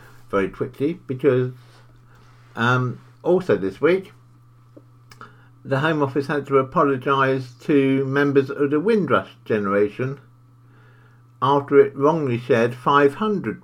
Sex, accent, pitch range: male, British, 110-130 Hz